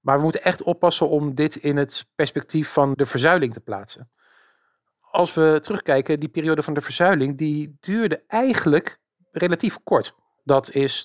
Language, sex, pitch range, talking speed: Dutch, male, 125-155 Hz, 165 wpm